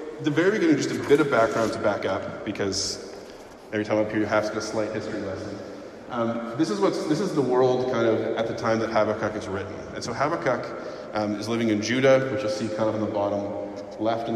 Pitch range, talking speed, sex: 105-115 Hz, 245 wpm, male